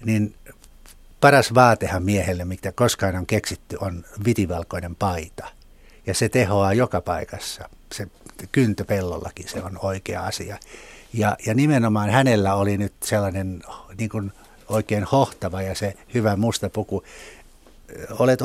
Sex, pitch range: male, 95-115 Hz